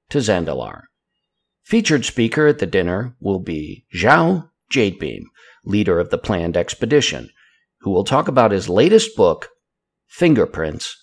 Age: 60-79